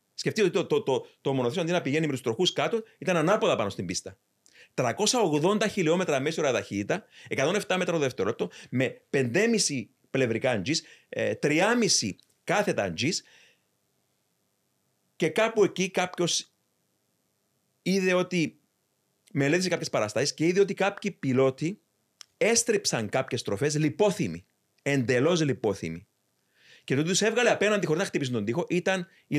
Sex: male